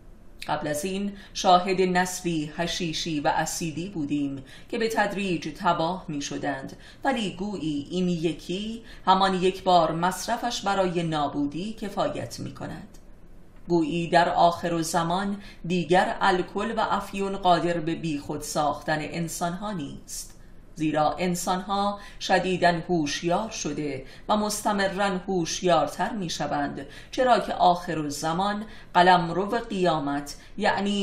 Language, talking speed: Persian, 110 wpm